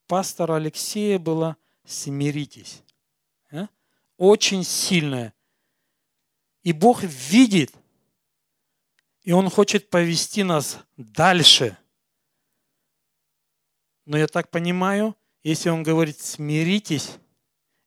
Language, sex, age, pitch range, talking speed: Russian, male, 50-69, 145-190 Hz, 75 wpm